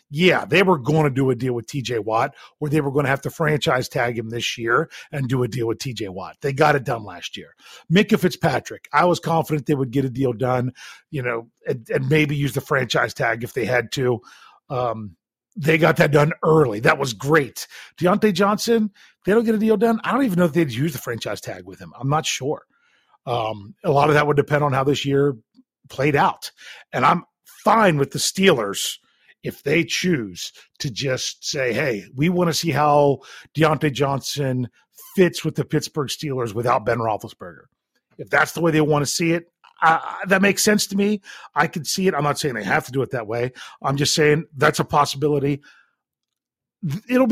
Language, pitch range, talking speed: English, 130-165 Hz, 215 wpm